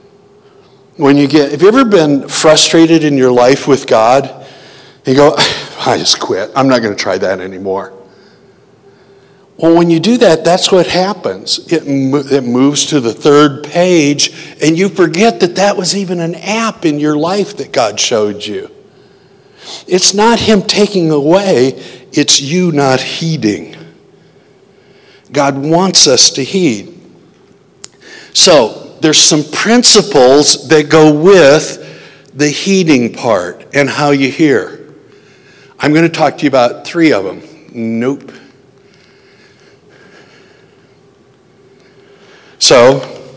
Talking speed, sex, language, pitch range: 135 wpm, male, English, 135-190 Hz